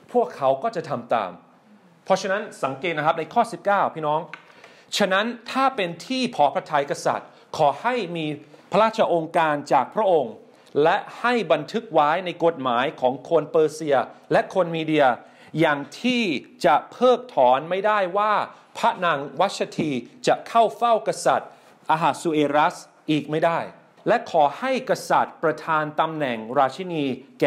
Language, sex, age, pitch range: English, male, 30-49, 135-195 Hz